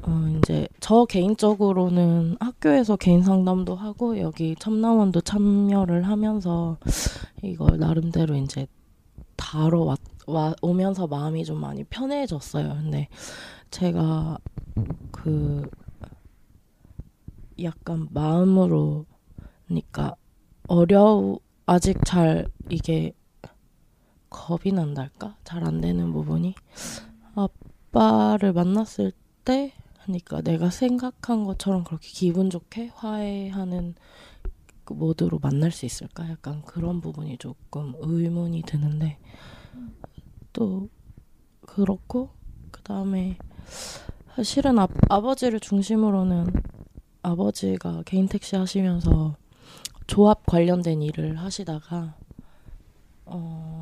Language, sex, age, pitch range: Korean, female, 20-39, 145-195 Hz